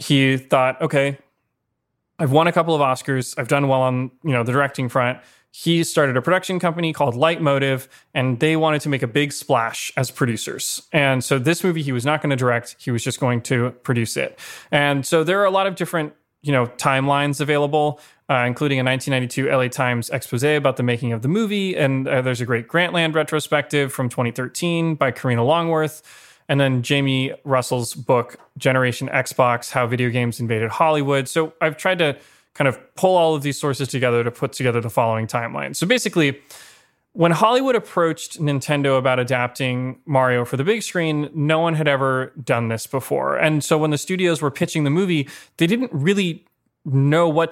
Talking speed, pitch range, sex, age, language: 195 wpm, 130-165 Hz, male, 30-49, English